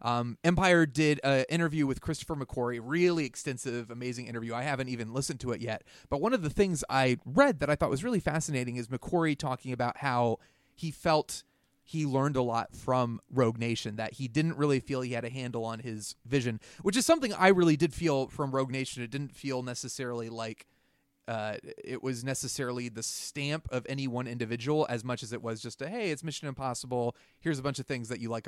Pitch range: 120-150 Hz